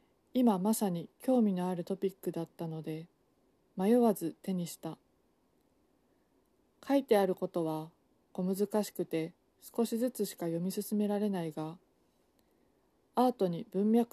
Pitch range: 175-225 Hz